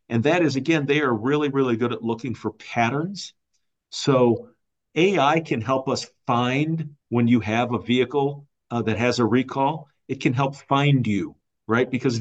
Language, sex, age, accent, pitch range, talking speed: English, male, 50-69, American, 110-135 Hz, 175 wpm